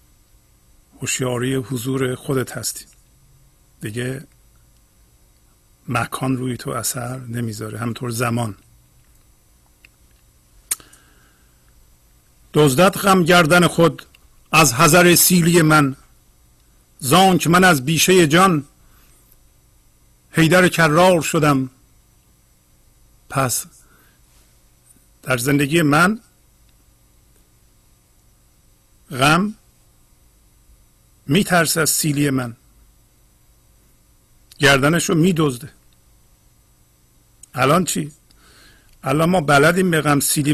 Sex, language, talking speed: male, Persian, 70 wpm